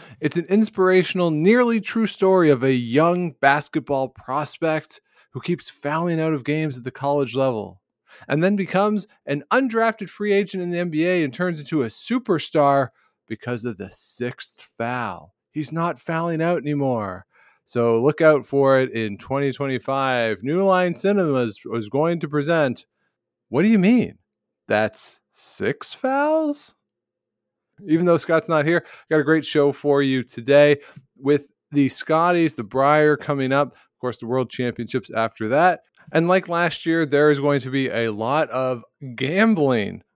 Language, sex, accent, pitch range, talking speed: English, male, American, 120-165 Hz, 160 wpm